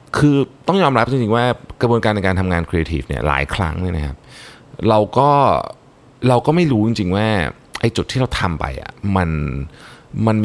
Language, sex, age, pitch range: Thai, male, 20-39, 80-115 Hz